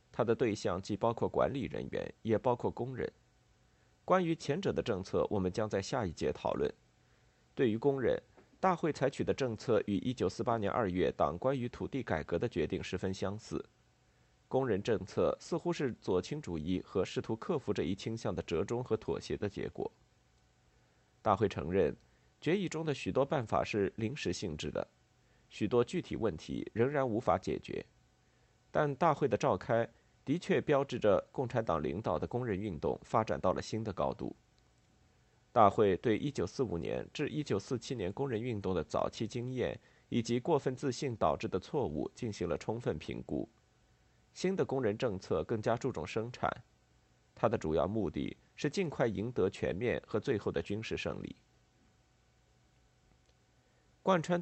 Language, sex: Chinese, male